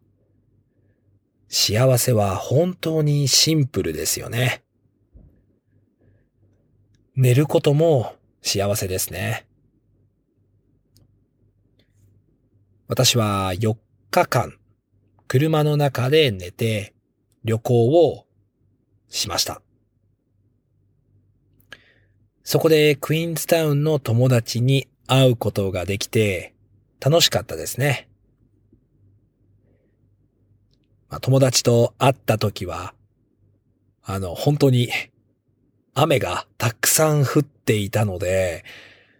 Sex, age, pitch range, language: male, 40-59, 100-130 Hz, English